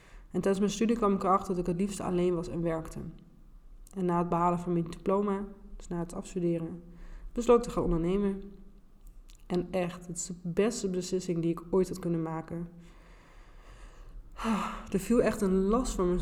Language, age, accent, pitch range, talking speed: Dutch, 20-39, Dutch, 170-195 Hz, 190 wpm